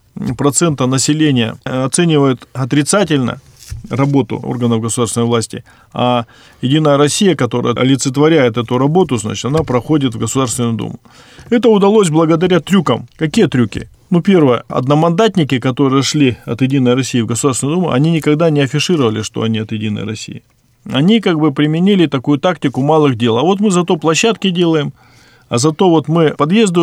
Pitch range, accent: 125-160 Hz, native